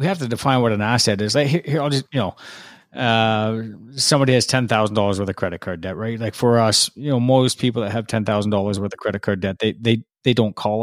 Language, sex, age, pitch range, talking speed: English, male, 30-49, 105-125 Hz, 250 wpm